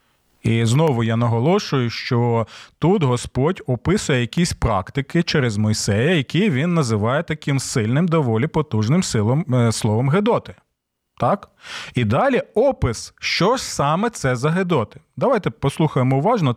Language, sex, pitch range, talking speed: Ukrainian, male, 120-180 Hz, 125 wpm